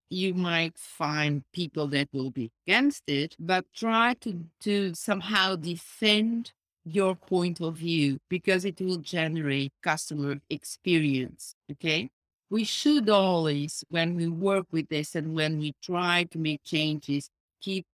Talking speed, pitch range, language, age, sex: 140 wpm, 155-200 Hz, English, 50-69, female